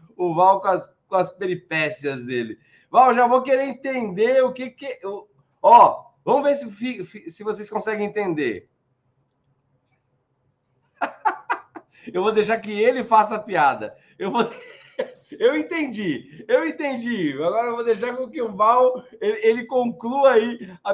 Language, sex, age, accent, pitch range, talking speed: Portuguese, male, 20-39, Brazilian, 175-255 Hz, 150 wpm